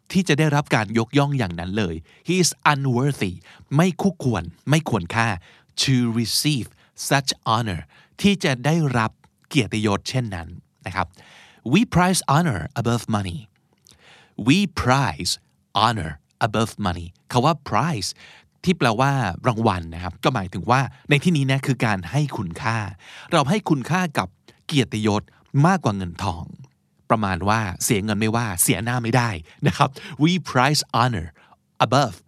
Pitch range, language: 105-145 Hz, Thai